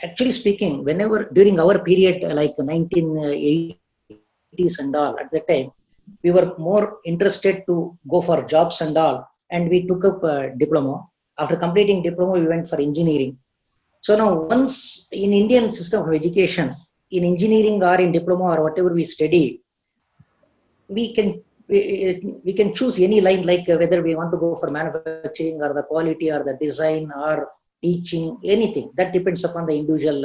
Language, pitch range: English, 155-190 Hz